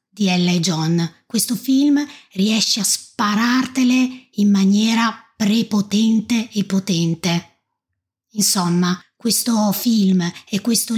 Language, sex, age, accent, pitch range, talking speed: Italian, female, 30-49, native, 185-230 Hz, 105 wpm